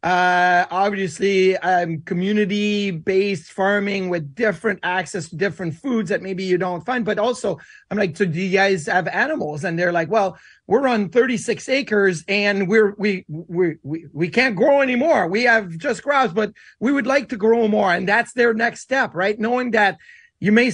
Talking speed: 190 wpm